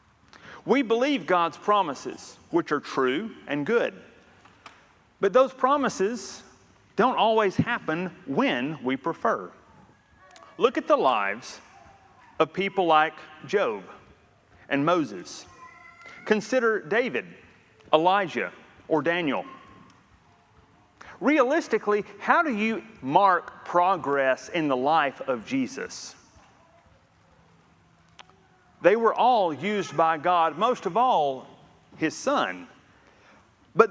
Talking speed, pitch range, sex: 100 wpm, 165-245 Hz, male